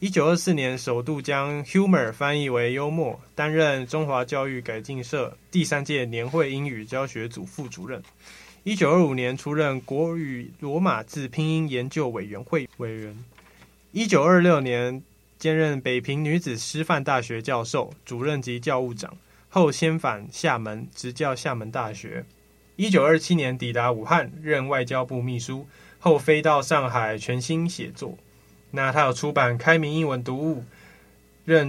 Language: Chinese